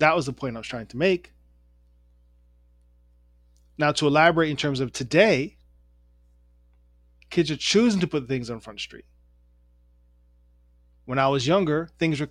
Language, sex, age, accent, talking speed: English, male, 20-39, American, 160 wpm